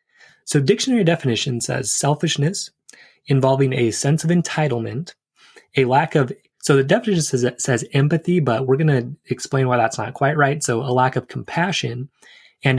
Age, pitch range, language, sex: 20-39, 120-145 Hz, English, male